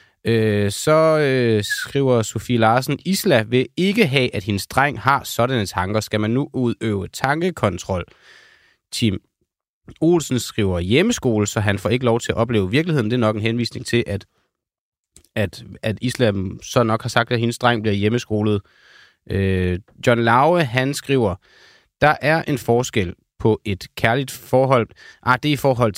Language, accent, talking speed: Danish, native, 165 wpm